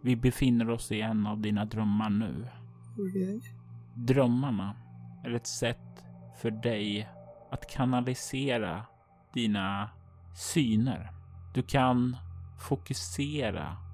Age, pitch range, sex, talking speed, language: 30-49, 105-130 Hz, male, 105 wpm, Swedish